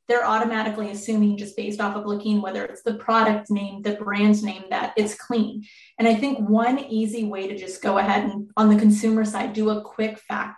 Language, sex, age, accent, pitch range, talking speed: English, female, 20-39, American, 210-240 Hz, 215 wpm